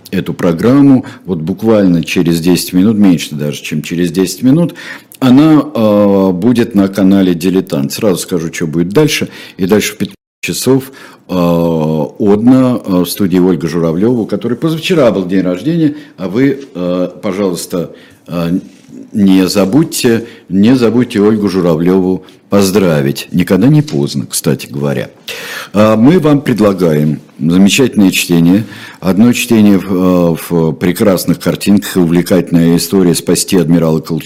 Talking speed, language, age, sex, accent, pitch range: 125 wpm, Russian, 60-79, male, native, 90-120 Hz